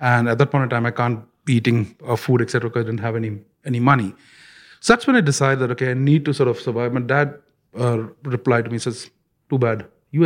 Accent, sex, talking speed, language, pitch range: Indian, male, 255 wpm, English, 115-140 Hz